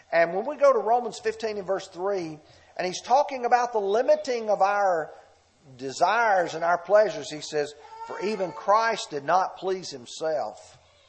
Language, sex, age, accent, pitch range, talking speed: English, male, 50-69, American, 140-215 Hz, 170 wpm